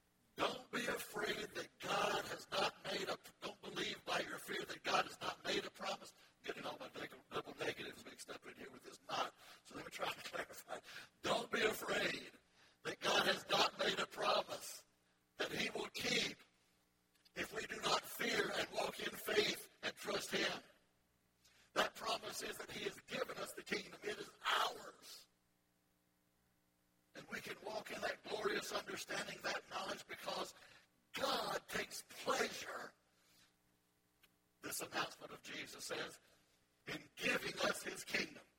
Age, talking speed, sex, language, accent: 60-79, 160 wpm, male, English, American